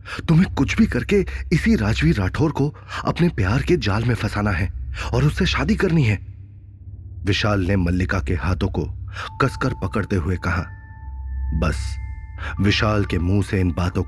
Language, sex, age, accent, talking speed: Hindi, male, 30-49, native, 160 wpm